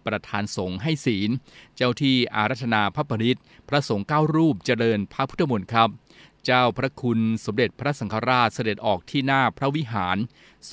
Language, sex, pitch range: Thai, male, 105-125 Hz